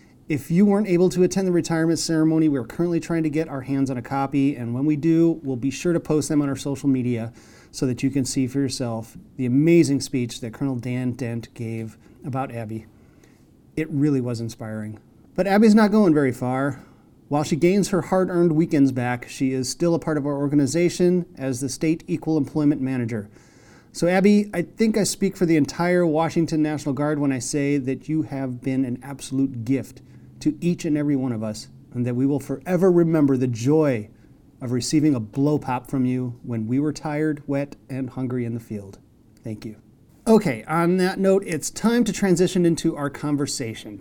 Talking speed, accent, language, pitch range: 200 wpm, American, English, 125-165 Hz